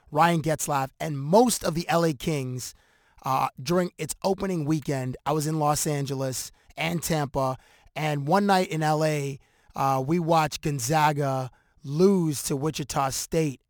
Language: English